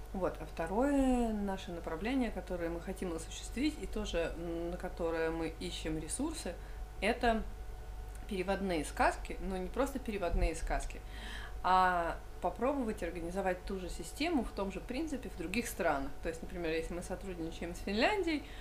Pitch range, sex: 170-240 Hz, female